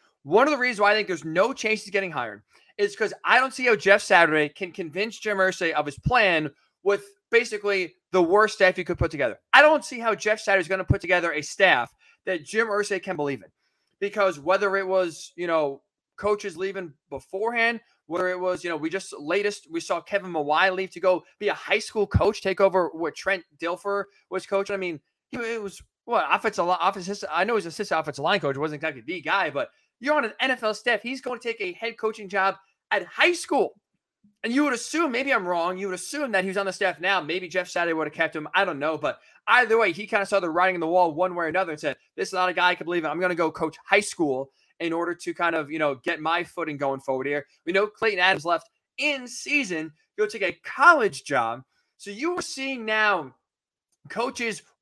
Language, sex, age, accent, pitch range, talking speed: English, male, 20-39, American, 170-215 Hz, 240 wpm